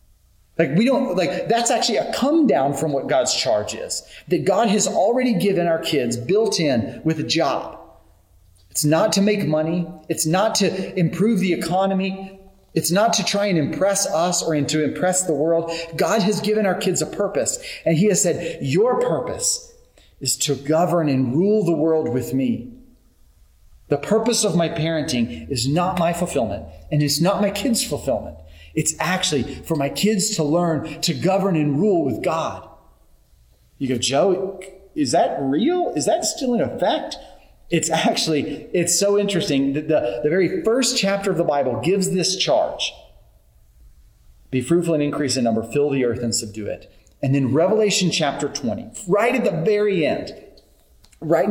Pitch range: 145-200 Hz